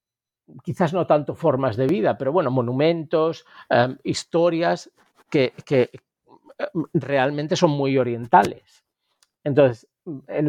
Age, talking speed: 50-69, 110 wpm